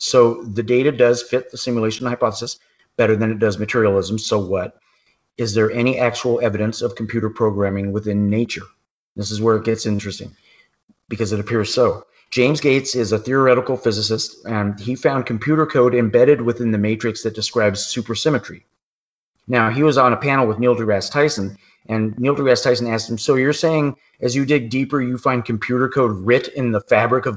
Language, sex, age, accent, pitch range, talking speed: English, male, 30-49, American, 110-135 Hz, 185 wpm